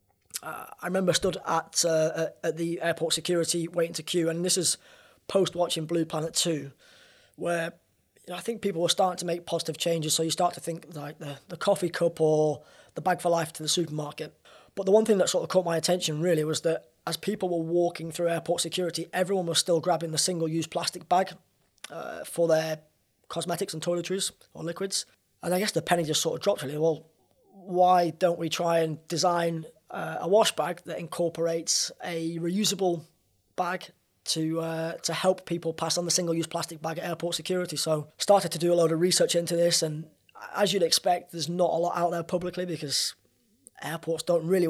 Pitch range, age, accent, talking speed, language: 160-180 Hz, 20-39, British, 205 wpm, English